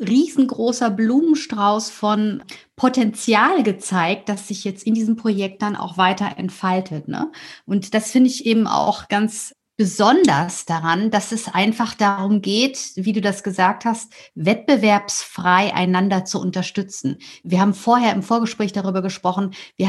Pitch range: 185-230 Hz